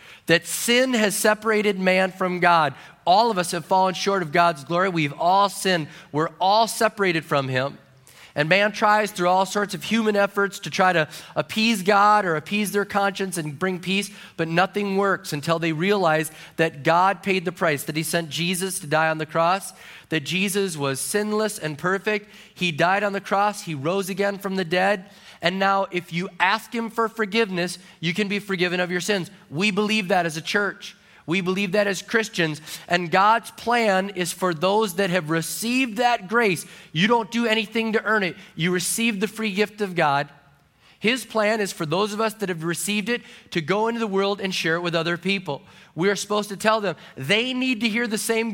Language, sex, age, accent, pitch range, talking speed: English, male, 30-49, American, 170-210 Hz, 205 wpm